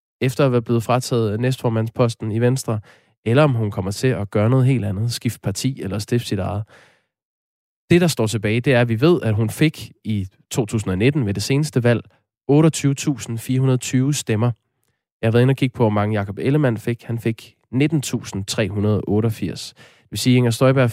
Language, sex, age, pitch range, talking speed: Danish, male, 20-39, 110-140 Hz, 180 wpm